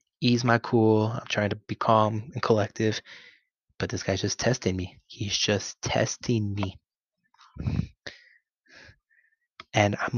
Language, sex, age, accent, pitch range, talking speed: English, male, 20-39, American, 105-120 Hz, 130 wpm